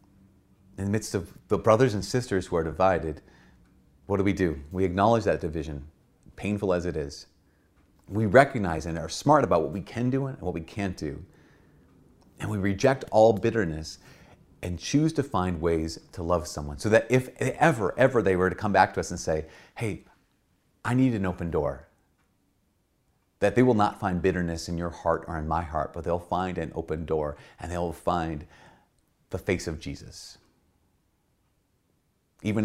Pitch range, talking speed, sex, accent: 80-95 Hz, 180 wpm, male, American